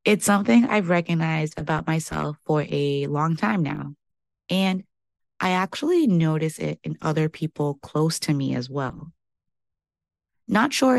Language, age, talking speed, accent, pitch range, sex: English, 20-39, 140 wpm, American, 145-190 Hz, female